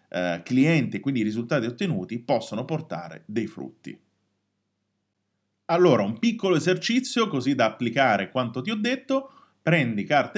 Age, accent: 30-49, native